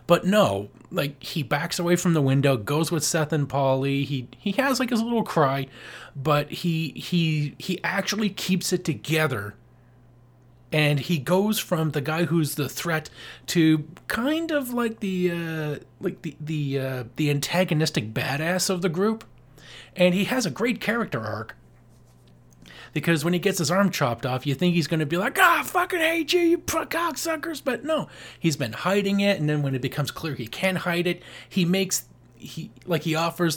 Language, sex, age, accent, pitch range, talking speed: English, male, 30-49, American, 135-180 Hz, 190 wpm